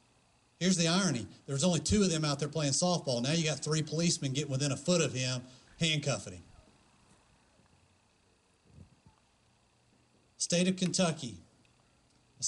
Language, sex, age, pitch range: English, male, 40-59, 125-170 Hz